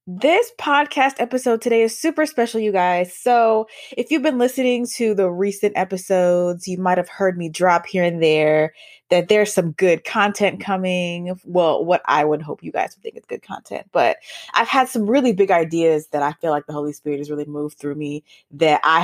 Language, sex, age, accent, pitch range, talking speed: English, female, 20-39, American, 160-215 Hz, 210 wpm